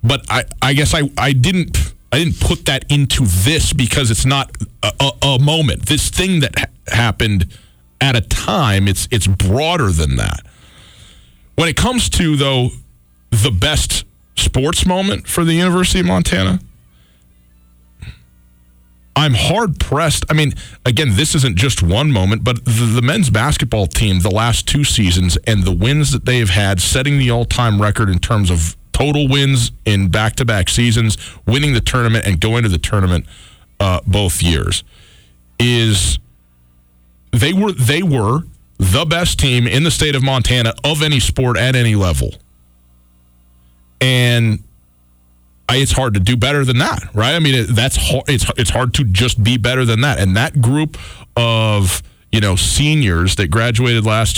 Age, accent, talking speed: 40-59, American, 165 wpm